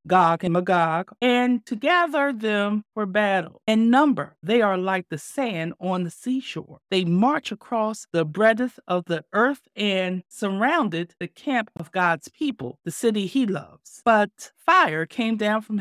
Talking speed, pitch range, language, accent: 165 wpm, 165-225 Hz, English, American